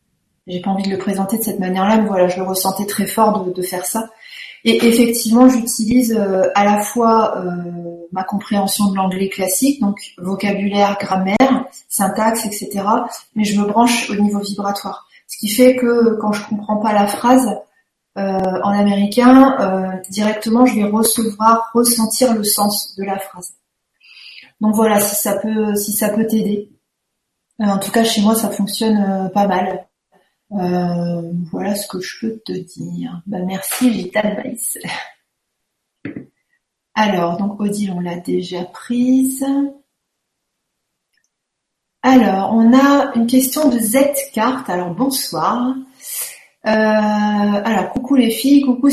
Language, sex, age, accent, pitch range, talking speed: French, female, 30-49, French, 195-240 Hz, 145 wpm